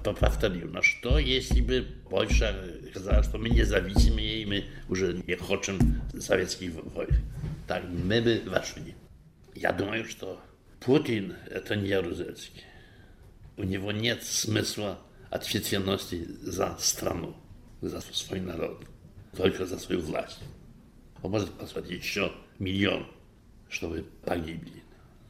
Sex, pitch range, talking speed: male, 90-115 Hz, 120 wpm